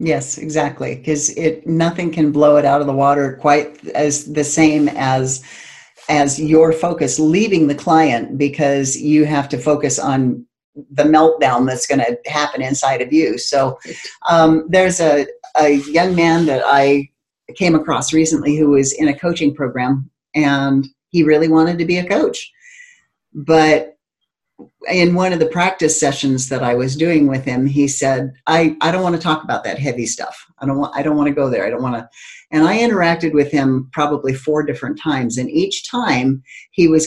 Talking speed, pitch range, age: 185 wpm, 140-170 Hz, 50-69